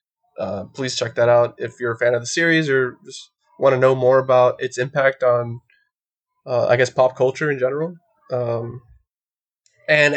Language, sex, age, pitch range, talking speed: English, male, 20-39, 125-150 Hz, 185 wpm